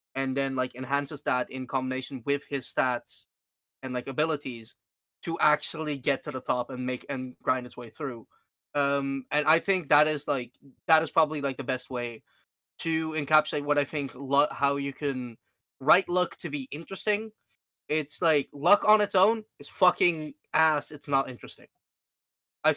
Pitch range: 130-155 Hz